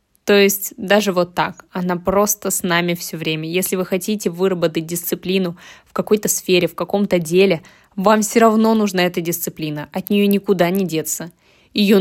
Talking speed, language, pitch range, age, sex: 170 wpm, Russian, 175-205 Hz, 20-39, female